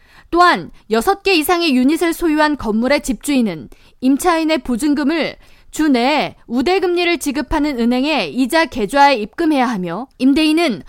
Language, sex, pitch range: Korean, female, 250-335 Hz